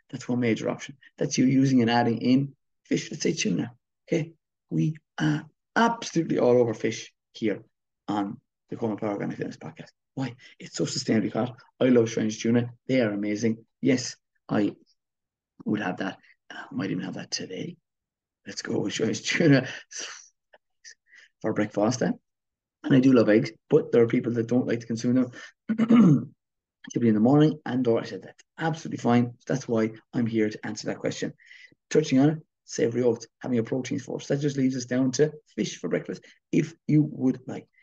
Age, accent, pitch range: 30-49, British, 120-155 Hz